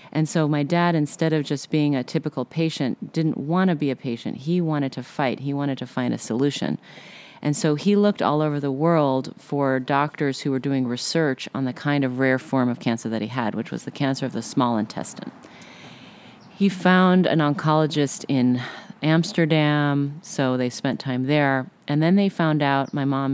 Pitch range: 140-175 Hz